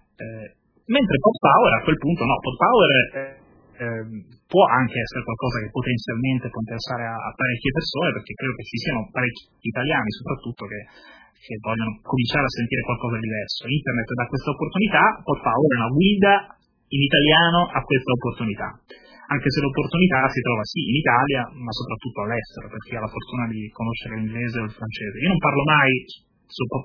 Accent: native